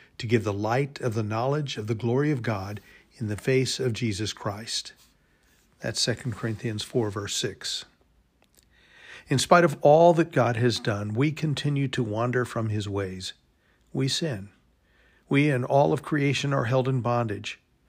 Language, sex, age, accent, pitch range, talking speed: English, male, 50-69, American, 115-140 Hz, 170 wpm